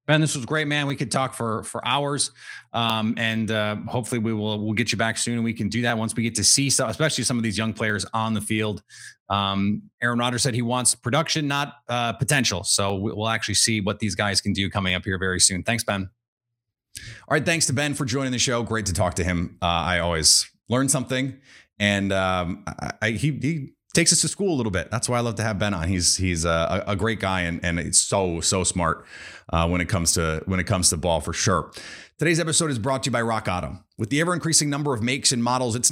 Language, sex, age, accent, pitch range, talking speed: English, male, 30-49, American, 105-145 Hz, 250 wpm